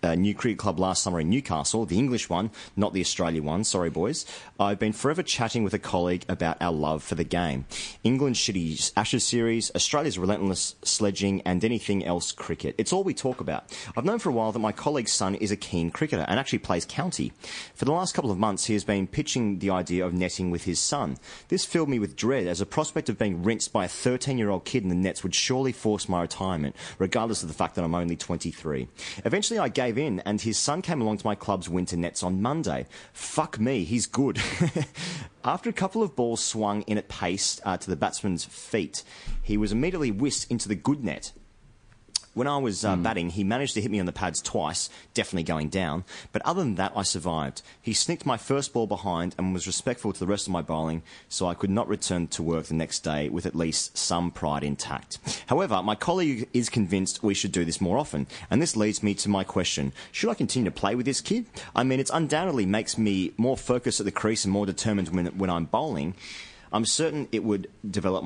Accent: Australian